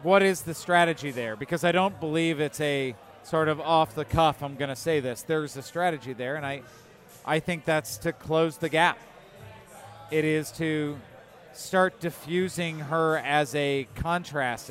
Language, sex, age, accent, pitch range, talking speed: English, male, 40-59, American, 145-180 Hz, 165 wpm